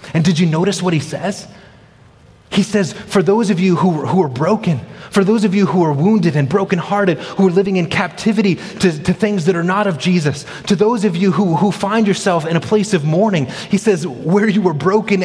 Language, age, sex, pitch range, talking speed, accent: English, 30-49, male, 120-185 Hz, 230 wpm, American